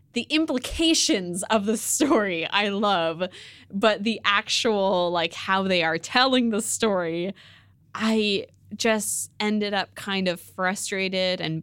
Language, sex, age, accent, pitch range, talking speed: English, female, 20-39, American, 165-225 Hz, 130 wpm